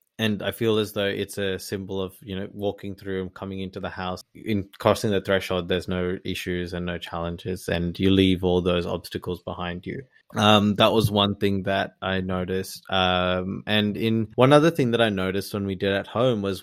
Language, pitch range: English, 95-105 Hz